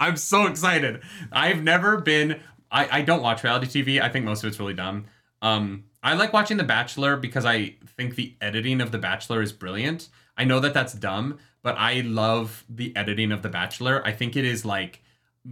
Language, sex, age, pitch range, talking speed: English, male, 30-49, 110-140 Hz, 205 wpm